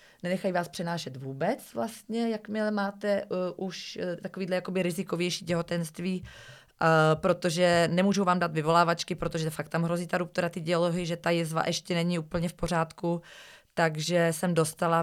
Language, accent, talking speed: Czech, native, 155 wpm